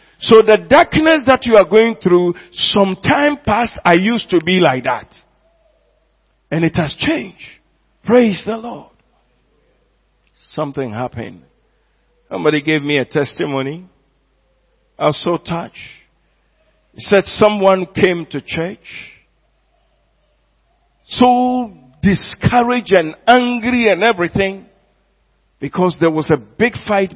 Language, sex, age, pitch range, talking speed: English, male, 50-69, 160-230 Hz, 115 wpm